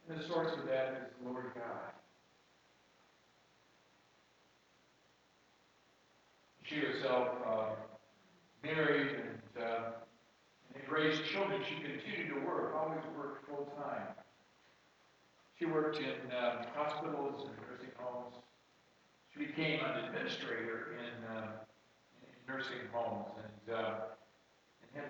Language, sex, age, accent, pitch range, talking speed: English, male, 50-69, American, 110-140 Hz, 110 wpm